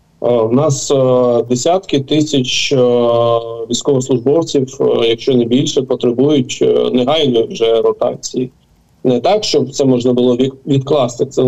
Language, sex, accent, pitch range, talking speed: Ukrainian, male, native, 130-165 Hz, 100 wpm